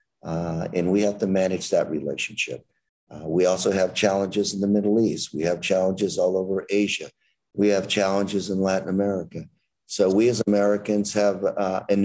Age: 50-69